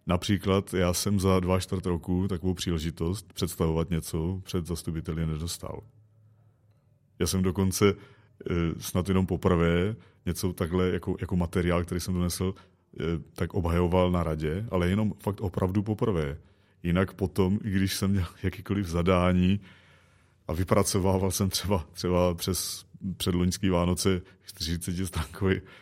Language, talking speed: Czech, 125 wpm